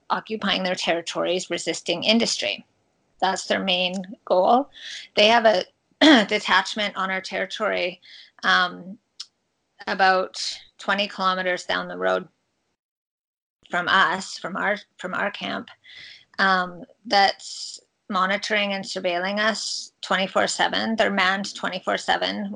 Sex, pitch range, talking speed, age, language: female, 185-215 Hz, 105 wpm, 30-49, English